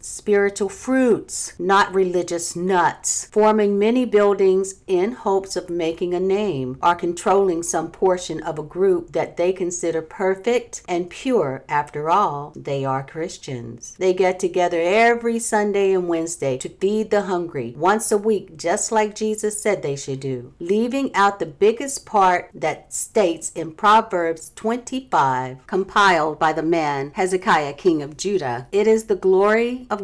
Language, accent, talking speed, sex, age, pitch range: English, American, 150 wpm, female, 50-69, 160-200 Hz